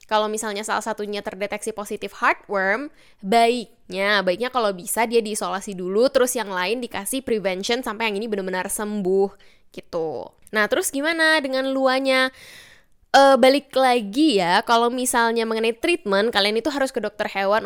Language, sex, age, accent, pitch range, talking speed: Indonesian, female, 10-29, native, 200-255 Hz, 150 wpm